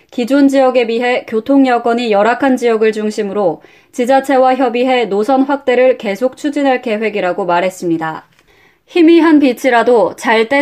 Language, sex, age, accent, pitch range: Korean, female, 20-39, native, 210-275 Hz